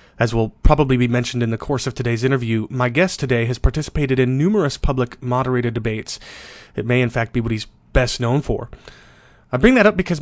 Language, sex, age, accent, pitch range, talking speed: English, male, 30-49, American, 120-160 Hz, 210 wpm